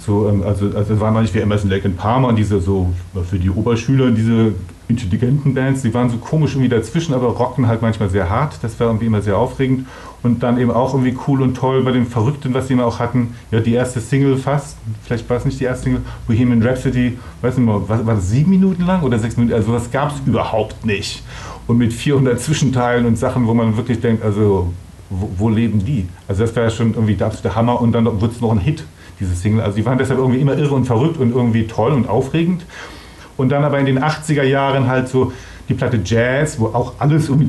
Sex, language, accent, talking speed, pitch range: male, German, German, 235 wpm, 110-130 Hz